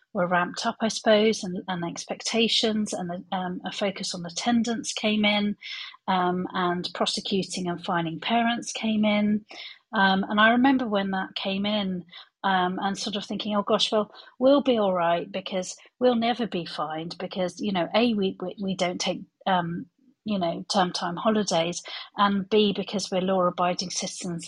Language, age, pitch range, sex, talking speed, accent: English, 40-59, 180-215 Hz, female, 170 wpm, British